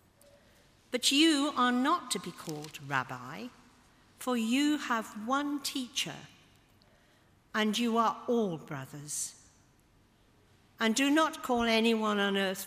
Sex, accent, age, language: female, British, 50-69, English